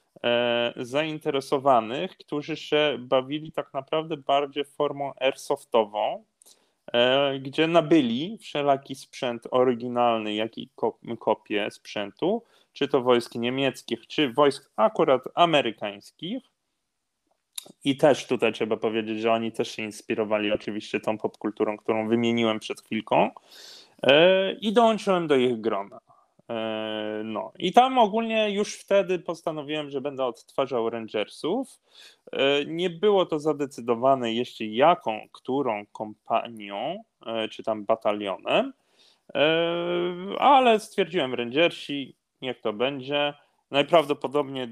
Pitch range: 110-155 Hz